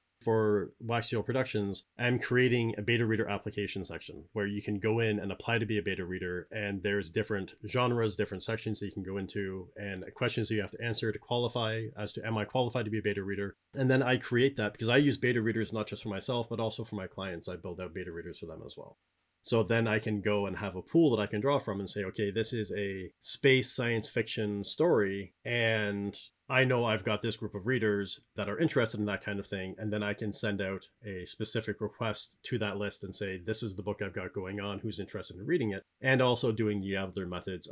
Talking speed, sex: 245 wpm, male